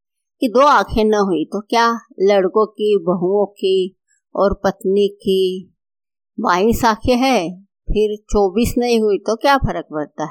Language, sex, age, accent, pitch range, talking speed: Hindi, female, 50-69, native, 185-245 Hz, 145 wpm